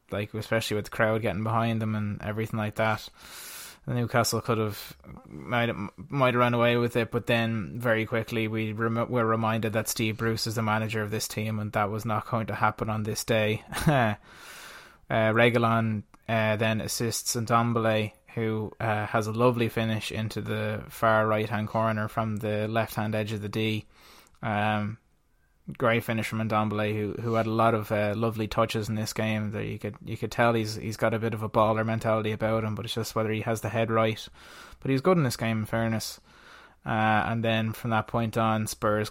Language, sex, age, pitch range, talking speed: English, male, 20-39, 105-115 Hz, 200 wpm